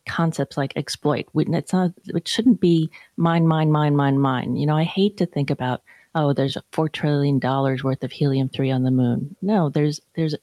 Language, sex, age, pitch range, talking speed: English, female, 40-59, 140-180 Hz, 180 wpm